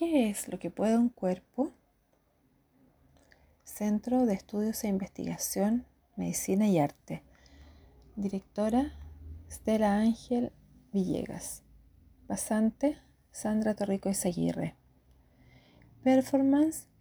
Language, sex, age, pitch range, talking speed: Spanish, female, 40-59, 190-250 Hz, 85 wpm